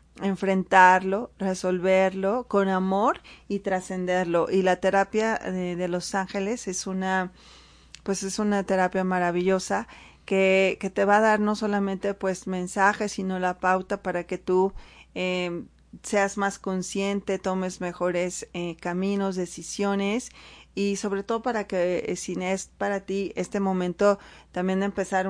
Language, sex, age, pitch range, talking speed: Spanish, female, 30-49, 180-200 Hz, 140 wpm